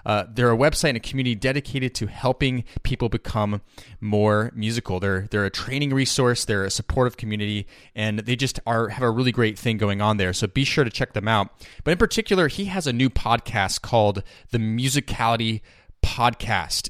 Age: 20-39